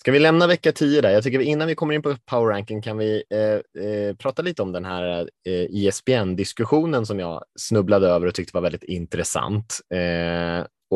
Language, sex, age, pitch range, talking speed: Swedish, male, 20-39, 90-110 Hz, 205 wpm